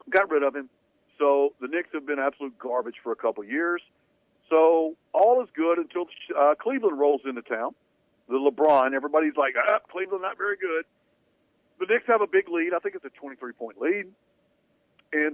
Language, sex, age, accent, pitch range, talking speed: English, male, 50-69, American, 130-200 Hz, 190 wpm